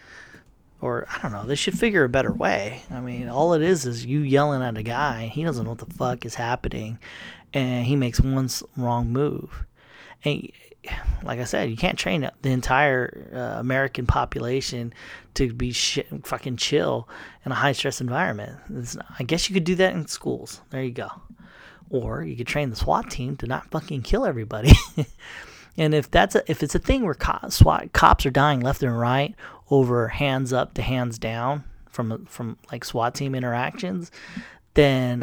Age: 30-49